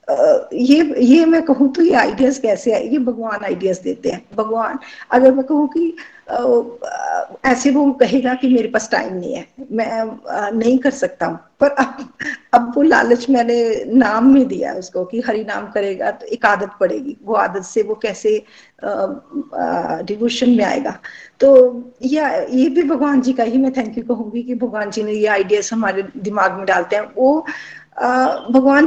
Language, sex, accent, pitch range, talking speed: Hindi, female, native, 215-280 Hz, 120 wpm